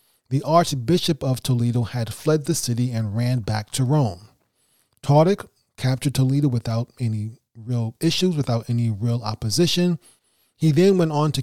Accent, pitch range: American, 115-150 Hz